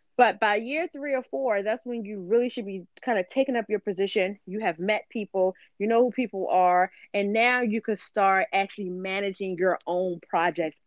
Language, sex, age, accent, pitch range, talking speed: English, female, 20-39, American, 175-215 Hz, 205 wpm